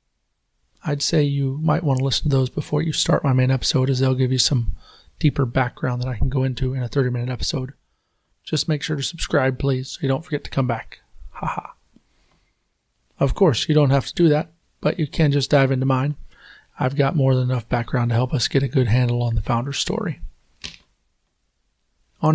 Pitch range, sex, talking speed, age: 130-155 Hz, male, 210 wpm, 30-49